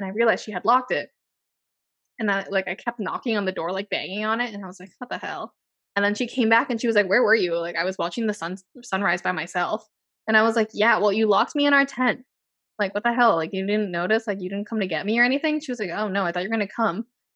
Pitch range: 195-250 Hz